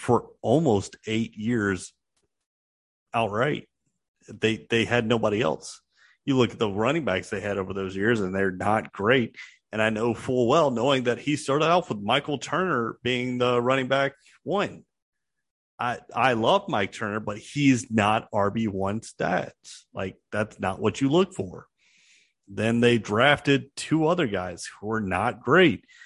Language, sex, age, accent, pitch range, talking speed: English, male, 30-49, American, 110-145 Hz, 165 wpm